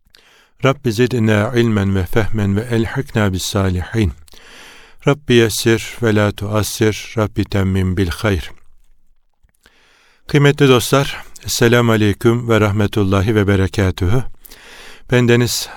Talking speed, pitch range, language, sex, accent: 90 wpm, 100-120 Hz, Turkish, male, native